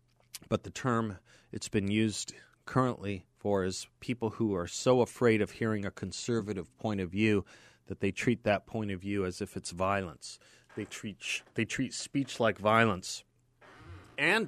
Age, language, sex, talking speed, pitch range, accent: 40-59, English, male, 165 wpm, 95-120 Hz, American